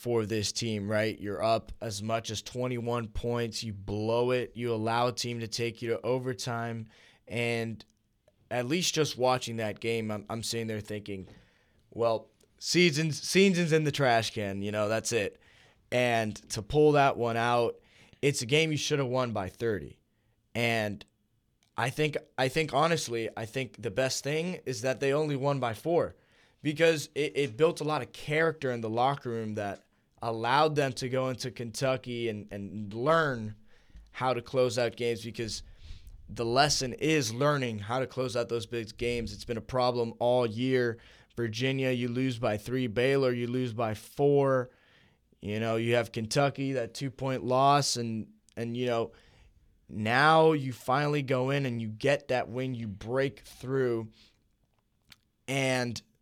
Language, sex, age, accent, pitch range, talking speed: English, male, 20-39, American, 110-130 Hz, 170 wpm